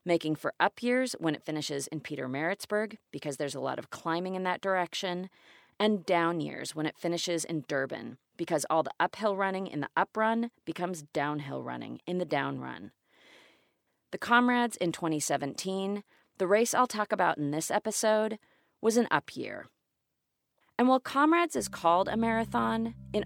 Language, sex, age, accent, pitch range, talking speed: English, female, 30-49, American, 145-210 Hz, 170 wpm